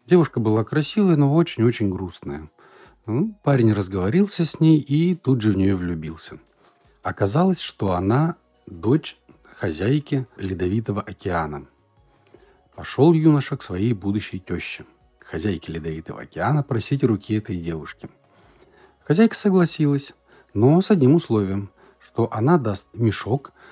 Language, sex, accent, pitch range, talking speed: Russian, male, native, 90-140 Hz, 120 wpm